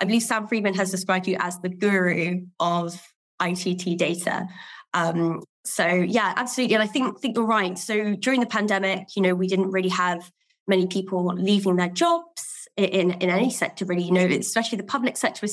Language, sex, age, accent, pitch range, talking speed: English, female, 20-39, British, 180-210 Hz, 195 wpm